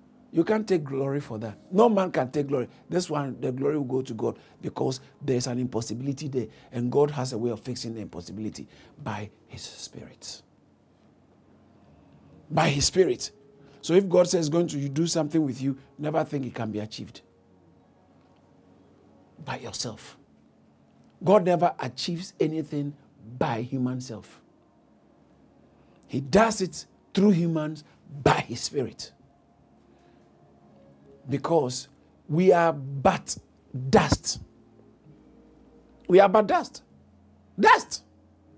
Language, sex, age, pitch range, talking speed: English, male, 50-69, 110-165 Hz, 130 wpm